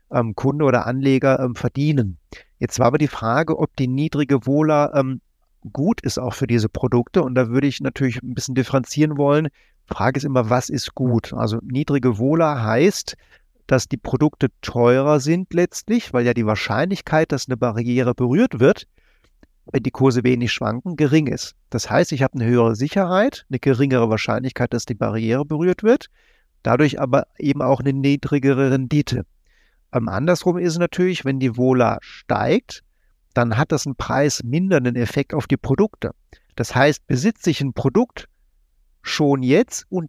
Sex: male